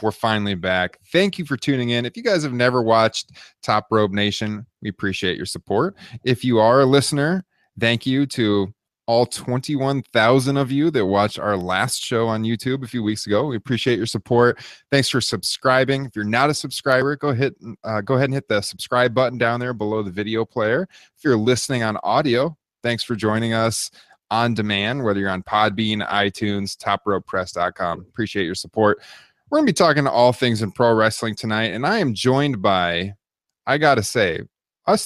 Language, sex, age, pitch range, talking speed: English, male, 20-39, 105-130 Hz, 190 wpm